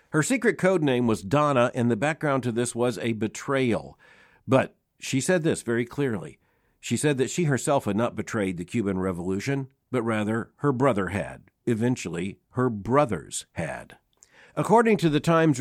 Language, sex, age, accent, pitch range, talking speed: English, male, 50-69, American, 110-140 Hz, 170 wpm